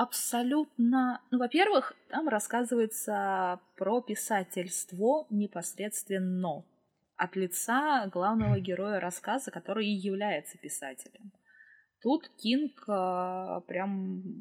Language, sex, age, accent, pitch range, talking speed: Russian, female, 20-39, native, 180-235 Hz, 85 wpm